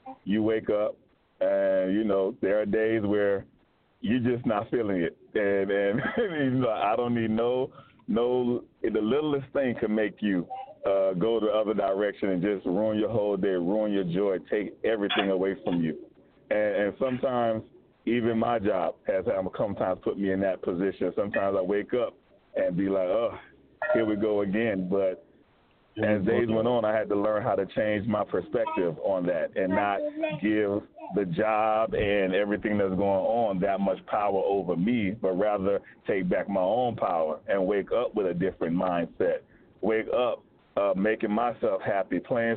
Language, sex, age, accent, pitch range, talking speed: English, male, 40-59, American, 100-115 Hz, 180 wpm